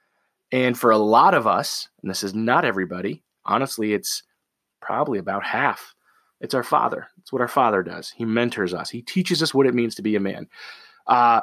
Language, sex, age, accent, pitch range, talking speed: English, male, 30-49, American, 115-160 Hz, 200 wpm